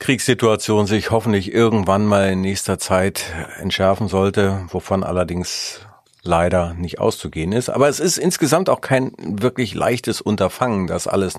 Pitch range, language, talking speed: 100-125 Hz, German, 140 wpm